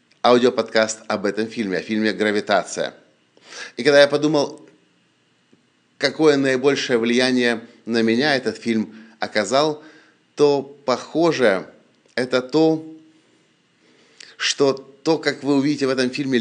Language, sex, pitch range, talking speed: English, male, 110-140 Hz, 115 wpm